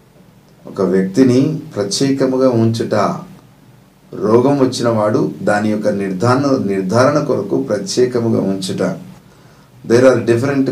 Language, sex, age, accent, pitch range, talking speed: Telugu, male, 50-69, native, 105-130 Hz, 95 wpm